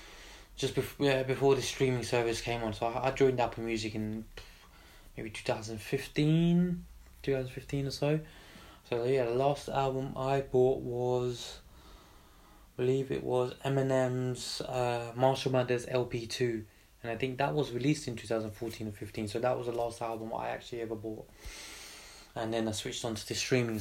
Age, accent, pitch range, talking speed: 20-39, British, 110-125 Hz, 165 wpm